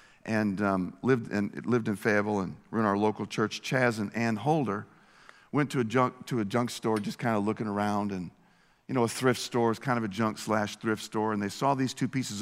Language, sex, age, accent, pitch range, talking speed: English, male, 50-69, American, 110-135 Hz, 240 wpm